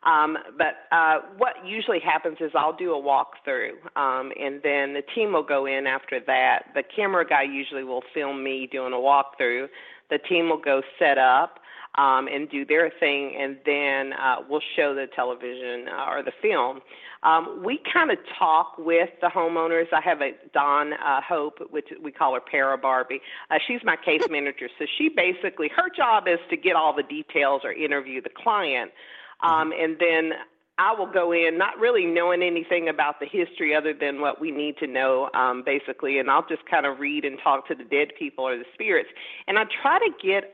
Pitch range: 140-195 Hz